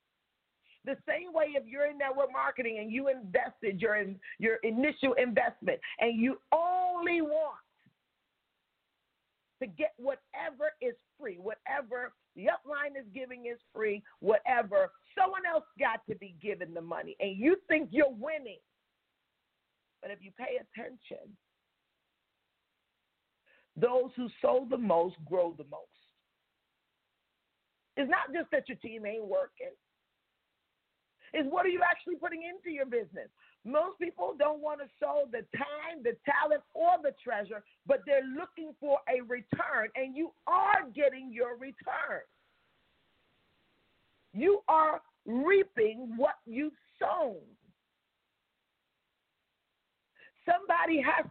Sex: female